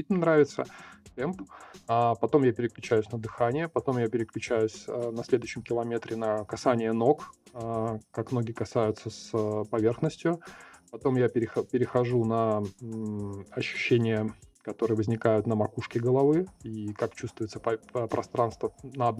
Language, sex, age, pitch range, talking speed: Russian, male, 20-39, 110-130 Hz, 115 wpm